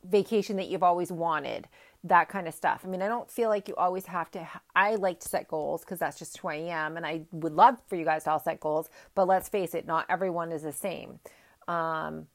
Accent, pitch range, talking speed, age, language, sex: American, 170-200 Hz, 250 wpm, 30-49, English, female